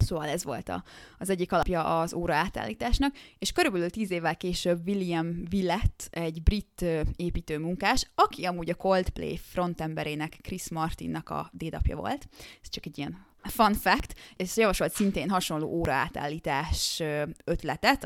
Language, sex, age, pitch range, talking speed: Hungarian, female, 20-39, 155-185 Hz, 135 wpm